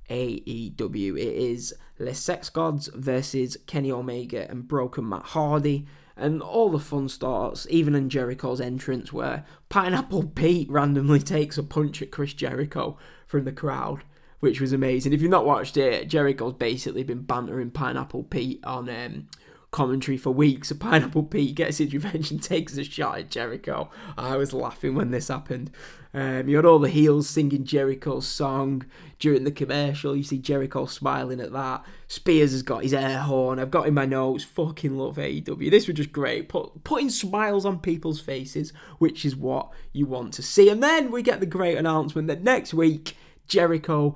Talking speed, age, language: 180 wpm, 10-29, English